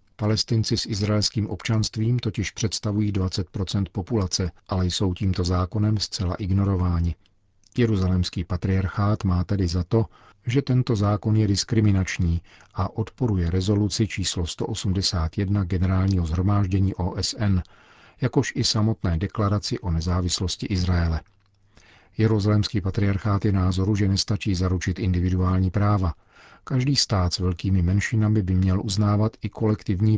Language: Czech